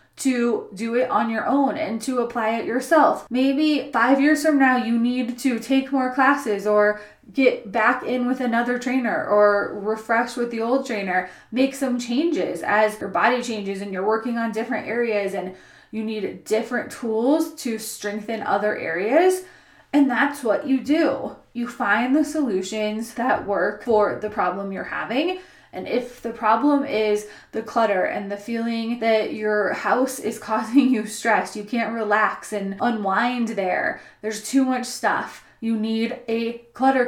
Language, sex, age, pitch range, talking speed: English, female, 20-39, 215-255 Hz, 170 wpm